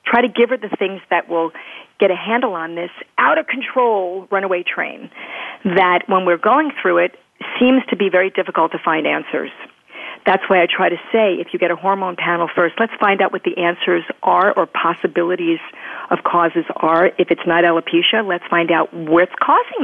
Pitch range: 170-230 Hz